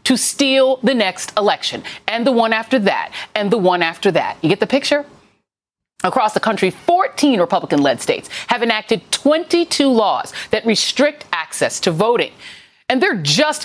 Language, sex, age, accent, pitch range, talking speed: English, female, 30-49, American, 200-295 Hz, 165 wpm